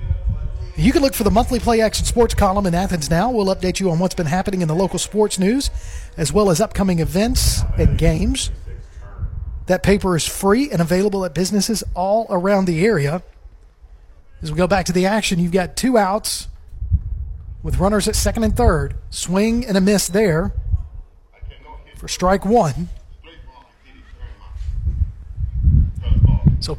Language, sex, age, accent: English, male, 40-59, American